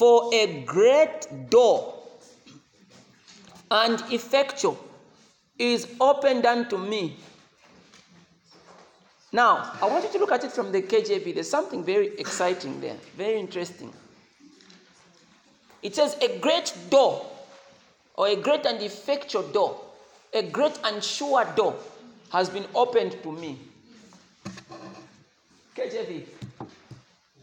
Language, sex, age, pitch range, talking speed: English, male, 40-59, 175-255 Hz, 110 wpm